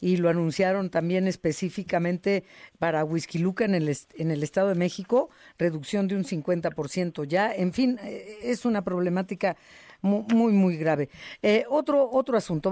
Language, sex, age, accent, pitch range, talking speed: Spanish, female, 50-69, Mexican, 165-205 Hz, 155 wpm